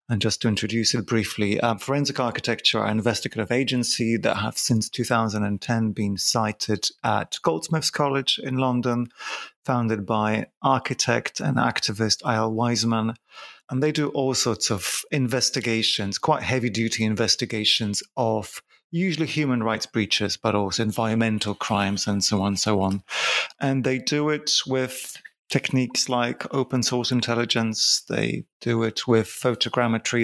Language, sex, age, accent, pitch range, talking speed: English, male, 30-49, British, 110-130 Hz, 140 wpm